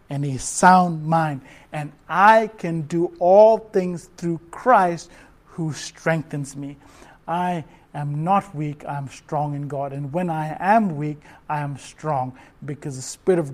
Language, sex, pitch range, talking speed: English, male, 150-190 Hz, 155 wpm